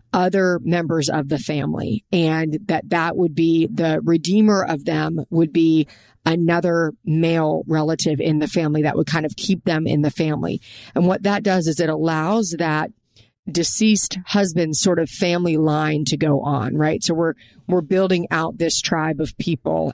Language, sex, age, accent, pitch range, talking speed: English, female, 40-59, American, 160-180 Hz, 175 wpm